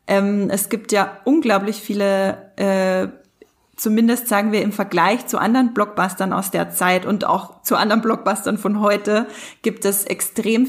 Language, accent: German, German